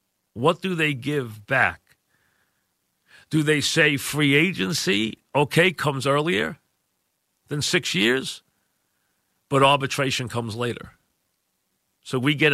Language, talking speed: English, 110 wpm